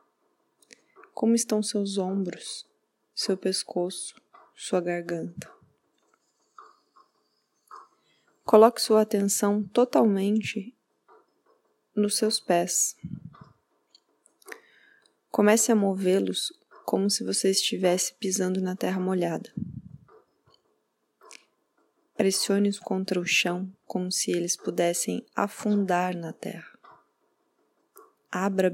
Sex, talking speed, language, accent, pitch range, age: female, 80 wpm, Portuguese, Brazilian, 180-215 Hz, 20-39